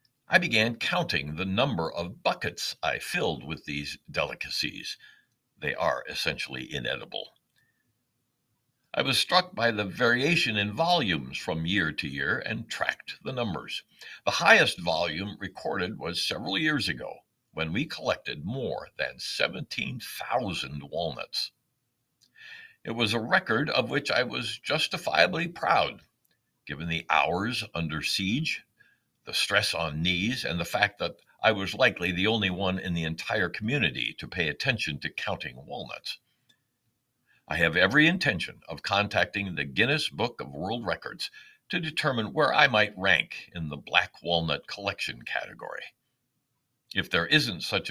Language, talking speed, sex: English, 145 wpm, male